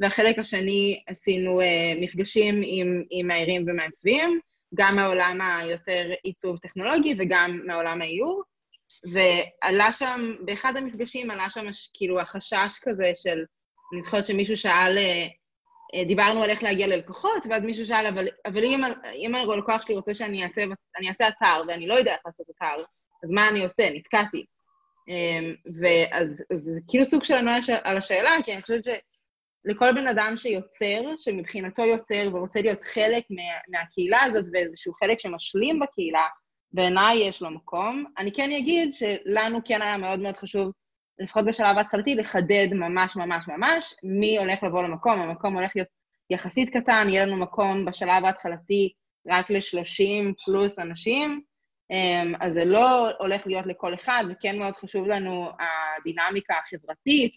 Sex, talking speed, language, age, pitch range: female, 150 wpm, Hebrew, 20-39, 180-225 Hz